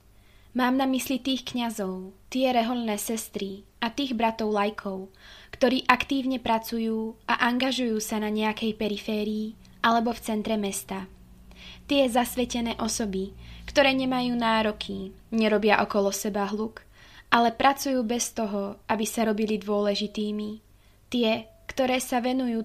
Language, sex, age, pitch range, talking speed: Slovak, female, 20-39, 205-240 Hz, 125 wpm